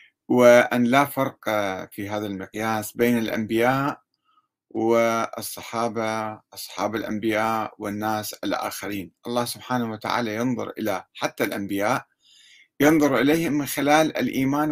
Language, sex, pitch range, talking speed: Arabic, male, 105-140 Hz, 100 wpm